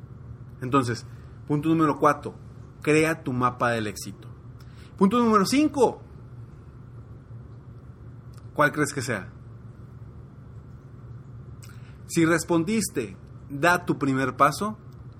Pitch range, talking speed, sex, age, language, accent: 120-150 Hz, 85 wpm, male, 30-49, Spanish, Mexican